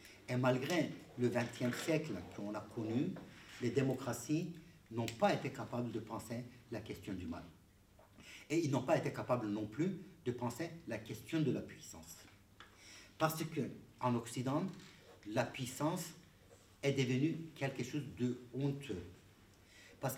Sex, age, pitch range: male, 60-79, 115-150 Hz